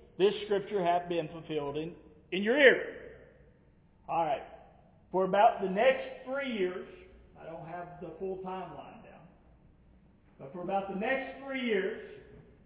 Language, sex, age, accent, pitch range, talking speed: English, male, 50-69, American, 180-235 Hz, 145 wpm